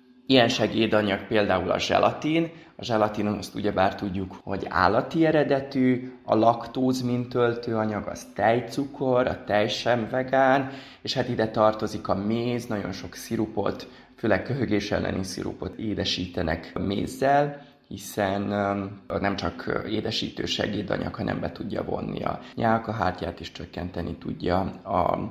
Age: 20-39